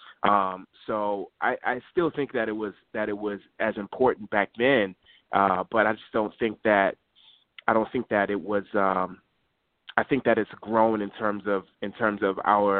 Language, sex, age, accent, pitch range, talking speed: English, male, 20-39, American, 100-120 Hz, 195 wpm